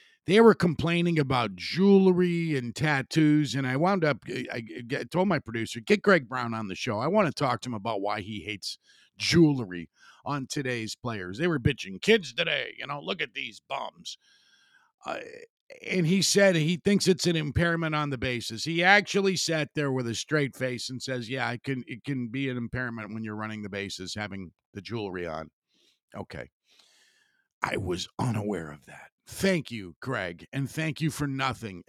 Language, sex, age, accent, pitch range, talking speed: English, male, 50-69, American, 115-185 Hz, 185 wpm